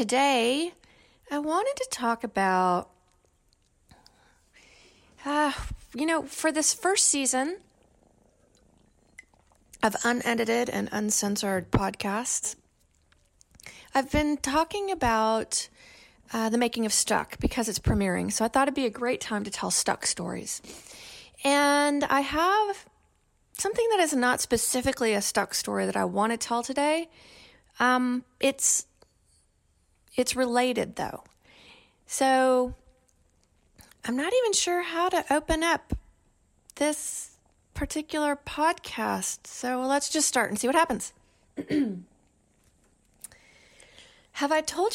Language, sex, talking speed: English, female, 115 wpm